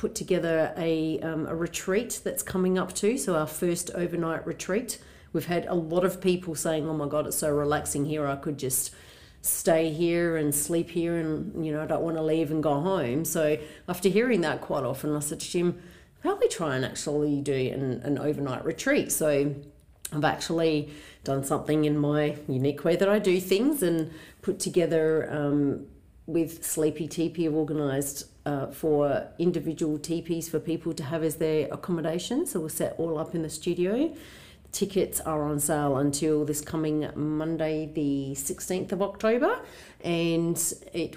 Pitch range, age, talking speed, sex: 150-170 Hz, 40-59, 180 wpm, female